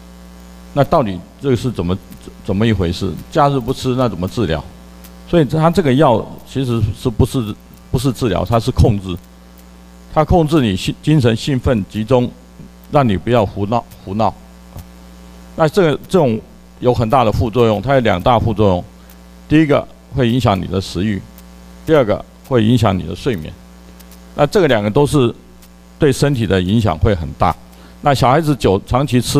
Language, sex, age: Chinese, male, 50-69